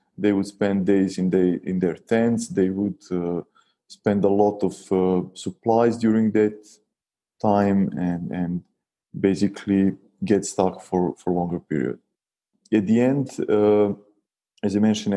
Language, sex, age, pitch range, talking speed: English, male, 20-39, 95-110 Hz, 145 wpm